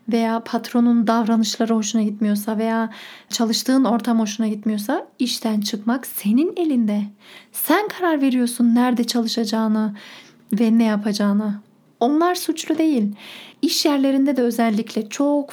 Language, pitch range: Turkish, 230-285 Hz